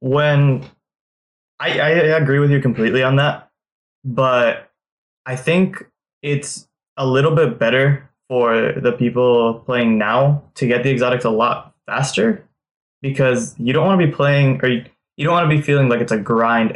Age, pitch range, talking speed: 20-39, 115-135 Hz, 170 wpm